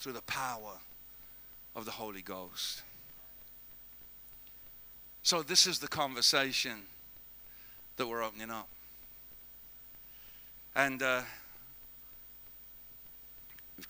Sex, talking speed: male, 80 wpm